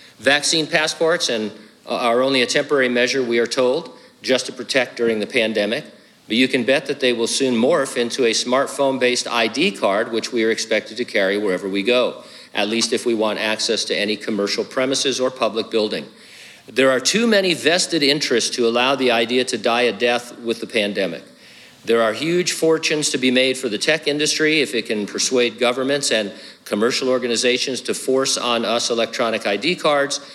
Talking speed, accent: 190 wpm, American